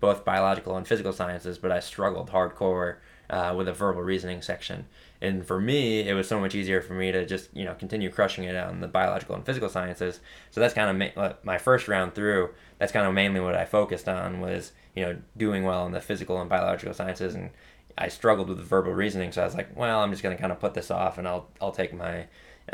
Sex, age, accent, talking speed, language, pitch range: male, 20-39, American, 245 wpm, English, 90-100 Hz